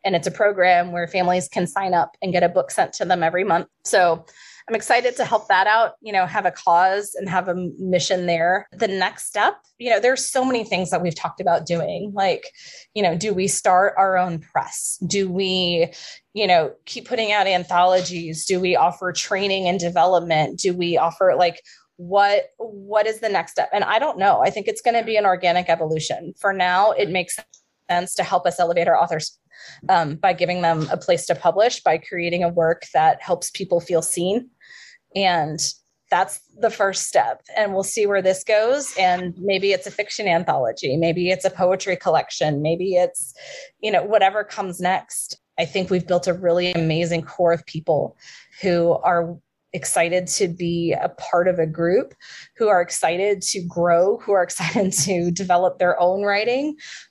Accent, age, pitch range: American, 20-39, 175-200 Hz